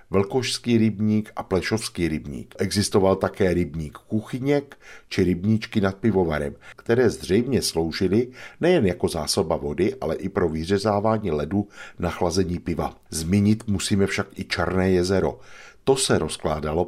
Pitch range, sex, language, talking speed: 85-110 Hz, male, Czech, 130 wpm